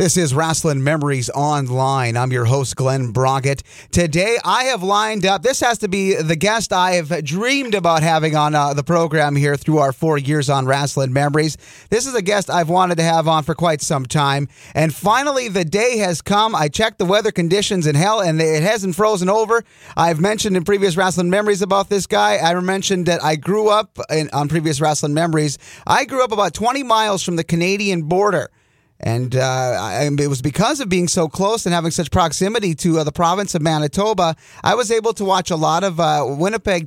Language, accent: English, American